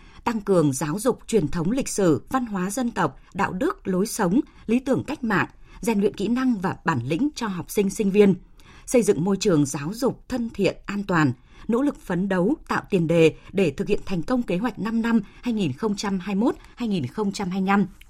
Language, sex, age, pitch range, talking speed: Vietnamese, female, 20-39, 170-225 Hz, 195 wpm